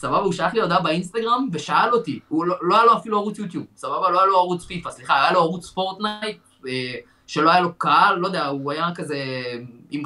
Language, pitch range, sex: Hebrew, 135-185 Hz, male